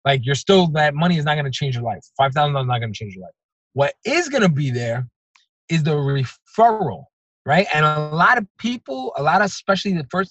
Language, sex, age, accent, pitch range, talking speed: English, male, 20-39, American, 125-190 Hz, 240 wpm